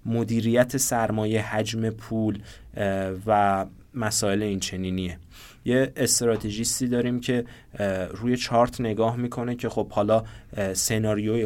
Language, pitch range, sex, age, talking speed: Persian, 100-115 Hz, male, 20-39, 100 wpm